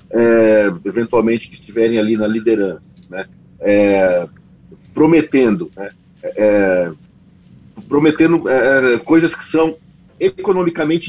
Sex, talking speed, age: male, 95 wpm, 40-59